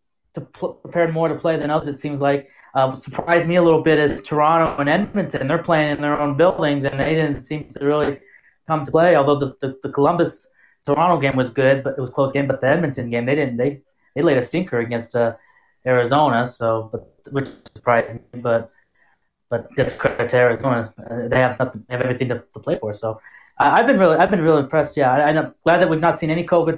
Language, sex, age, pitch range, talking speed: English, male, 20-39, 135-165 Hz, 230 wpm